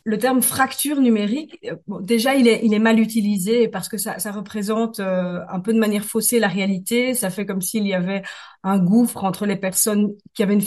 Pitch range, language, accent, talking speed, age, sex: 195-235 Hz, French, French, 220 wpm, 40-59, female